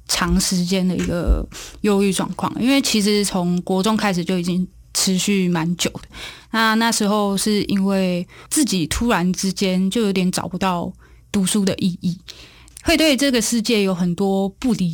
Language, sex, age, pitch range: Chinese, female, 20-39, 180-220 Hz